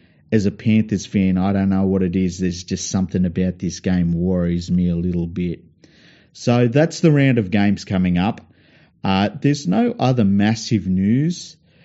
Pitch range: 90-110 Hz